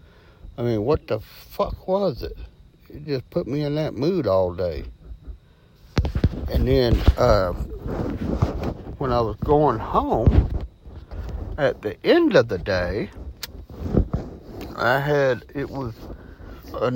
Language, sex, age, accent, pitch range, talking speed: English, male, 60-79, American, 90-145 Hz, 125 wpm